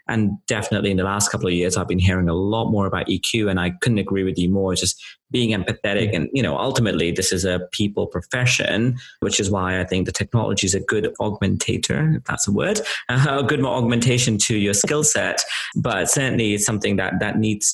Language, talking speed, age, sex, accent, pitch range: English, 225 wpm, 30-49, male, British, 100-120 Hz